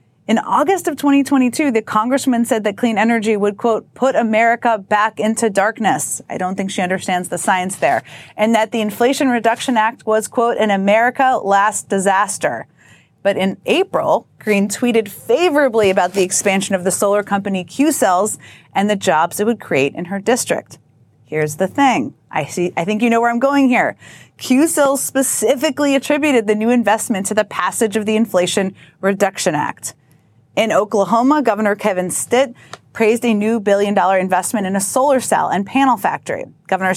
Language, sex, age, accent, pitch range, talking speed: English, female, 30-49, American, 195-250 Hz, 170 wpm